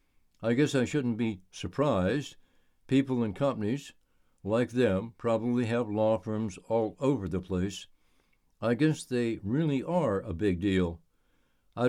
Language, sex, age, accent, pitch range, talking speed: English, male, 60-79, American, 90-120 Hz, 140 wpm